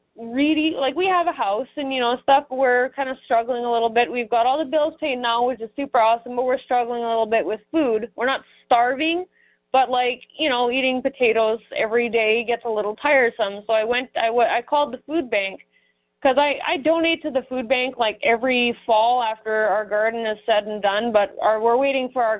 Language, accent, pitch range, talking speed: English, American, 215-270 Hz, 225 wpm